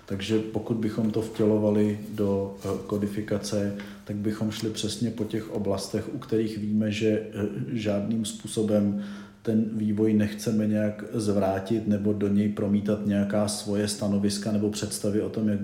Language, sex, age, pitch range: Czech, male, 40-59, 100-110 Hz